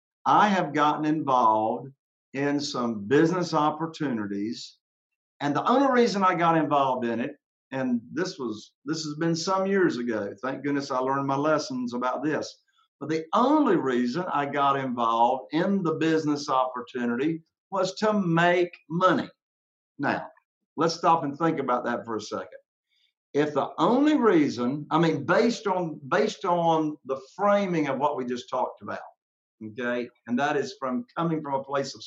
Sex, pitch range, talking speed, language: male, 130-190 Hz, 165 wpm, English